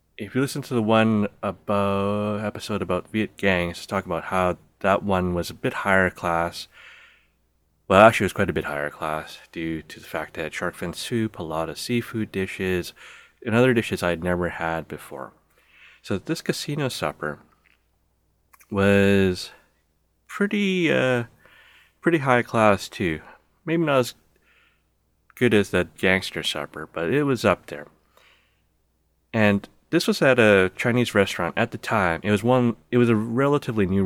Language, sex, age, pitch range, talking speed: English, male, 30-49, 80-110 Hz, 165 wpm